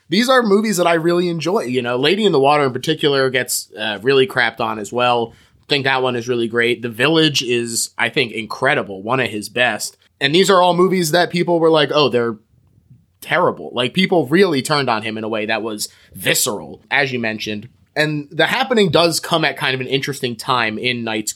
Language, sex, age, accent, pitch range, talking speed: English, male, 20-39, American, 115-150 Hz, 220 wpm